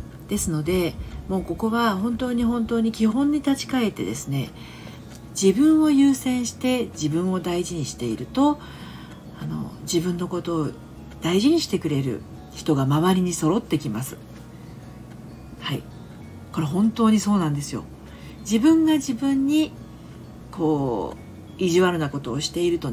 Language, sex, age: Japanese, female, 50-69